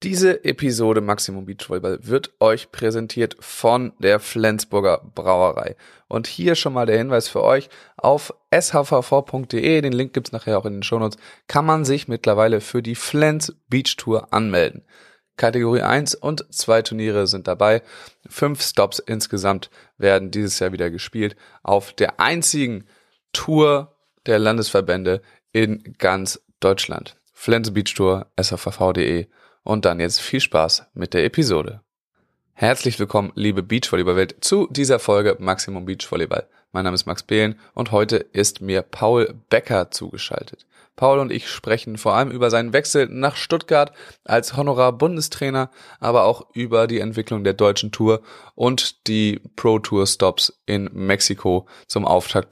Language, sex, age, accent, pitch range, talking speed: German, male, 20-39, German, 100-130 Hz, 145 wpm